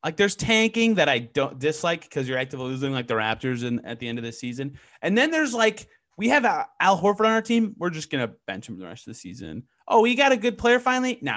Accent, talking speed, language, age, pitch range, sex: American, 270 wpm, English, 30-49, 125-200 Hz, male